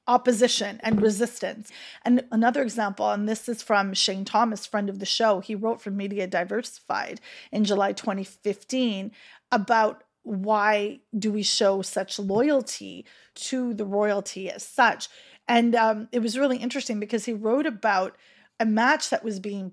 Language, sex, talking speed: English, female, 155 wpm